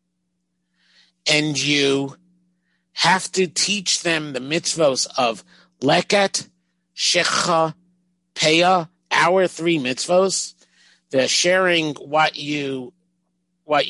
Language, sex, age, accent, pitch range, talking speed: English, male, 50-69, American, 135-180 Hz, 85 wpm